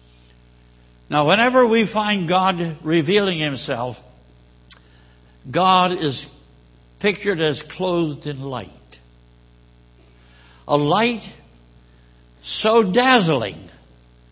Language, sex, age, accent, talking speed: English, male, 60-79, American, 75 wpm